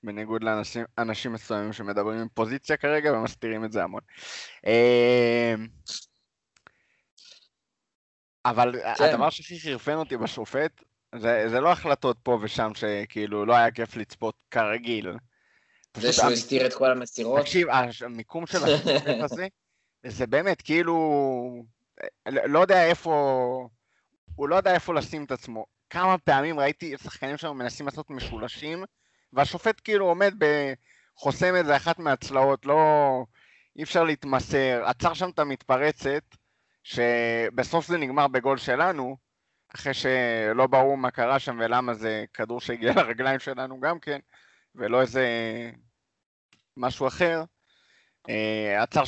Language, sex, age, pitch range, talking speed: Hebrew, male, 20-39, 115-150 Hz, 120 wpm